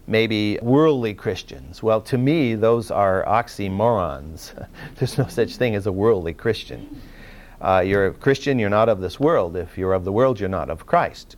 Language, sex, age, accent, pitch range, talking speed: English, male, 50-69, American, 105-155 Hz, 185 wpm